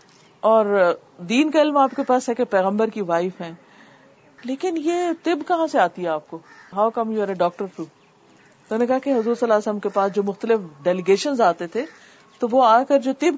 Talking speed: 215 wpm